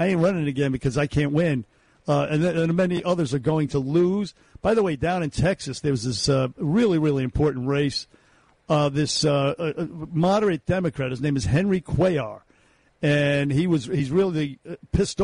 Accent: American